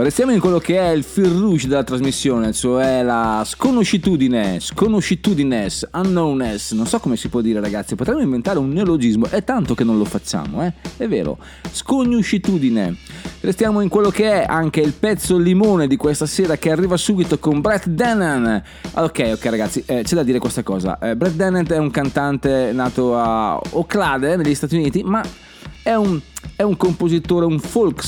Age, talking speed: 30-49, 175 wpm